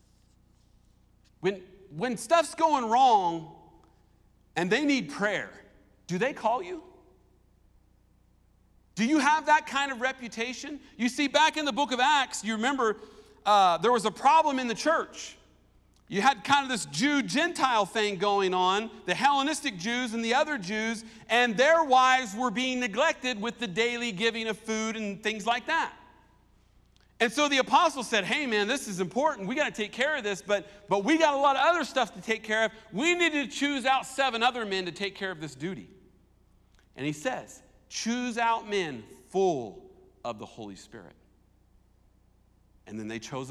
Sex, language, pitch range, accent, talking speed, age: male, English, 170-260 Hz, American, 180 wpm, 50-69